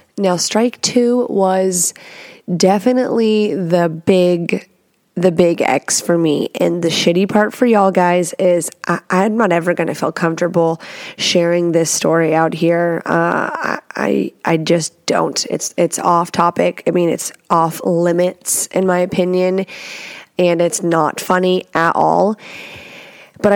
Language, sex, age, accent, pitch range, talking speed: English, female, 20-39, American, 175-195 Hz, 145 wpm